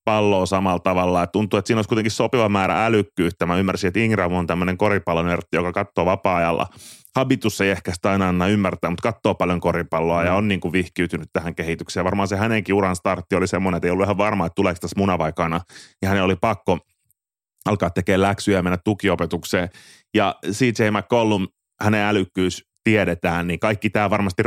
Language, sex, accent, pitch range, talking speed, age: Finnish, male, native, 85-105 Hz, 180 wpm, 30-49